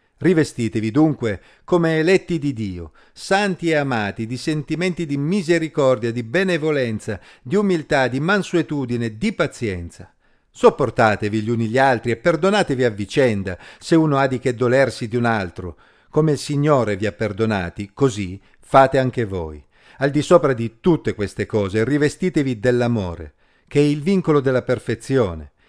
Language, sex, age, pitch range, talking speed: Italian, male, 50-69, 110-150 Hz, 150 wpm